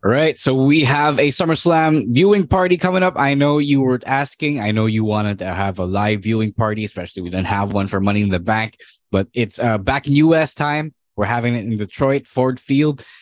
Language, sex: English, male